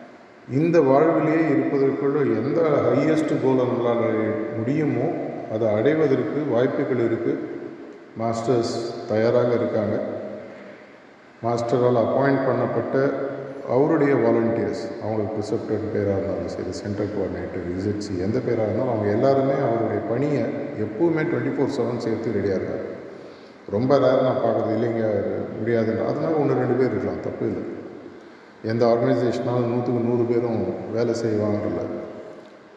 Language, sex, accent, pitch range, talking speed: Tamil, male, native, 110-135 Hz, 115 wpm